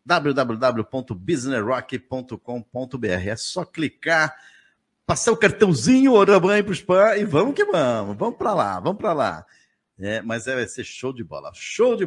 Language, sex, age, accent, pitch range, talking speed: Portuguese, male, 50-69, Brazilian, 120-165 Hz, 150 wpm